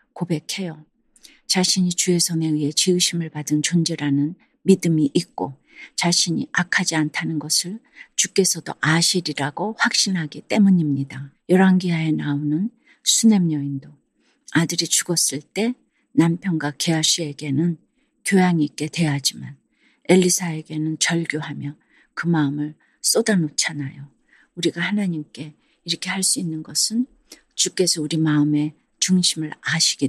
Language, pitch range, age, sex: Korean, 150-185 Hz, 40-59, female